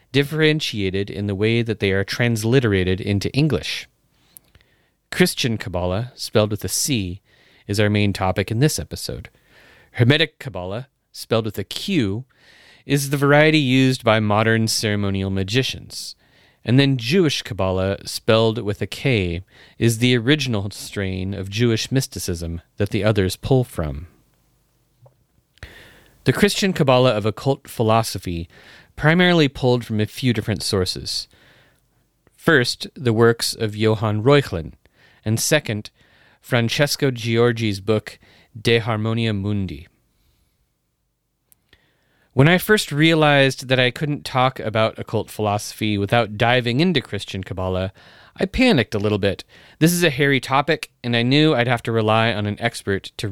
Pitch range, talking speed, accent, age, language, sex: 100-130 Hz, 135 wpm, American, 30-49, English, male